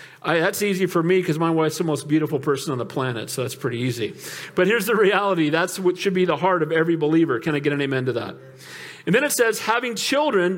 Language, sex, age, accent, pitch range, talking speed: English, male, 40-59, American, 170-215 Hz, 250 wpm